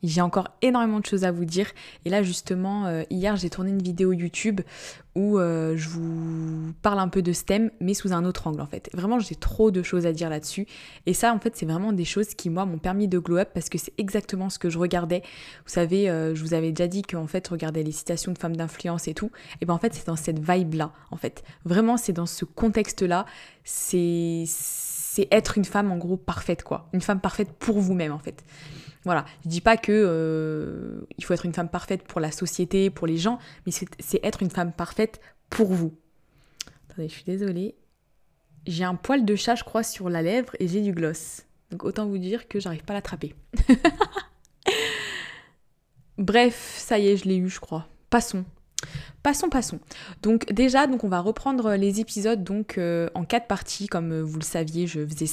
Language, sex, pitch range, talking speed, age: French, female, 165-205 Hz, 220 wpm, 20-39